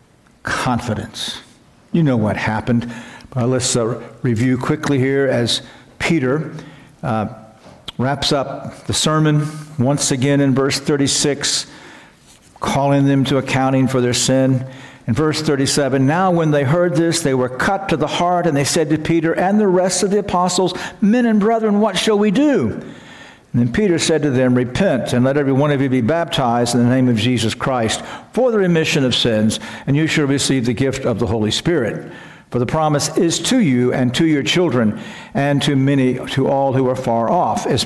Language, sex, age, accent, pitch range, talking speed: English, male, 60-79, American, 125-160 Hz, 185 wpm